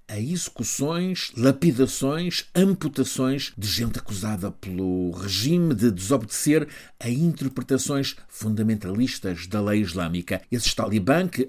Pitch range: 100-135 Hz